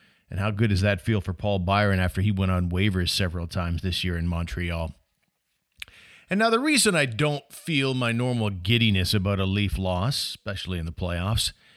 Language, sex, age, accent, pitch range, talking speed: English, male, 40-59, American, 95-120 Hz, 195 wpm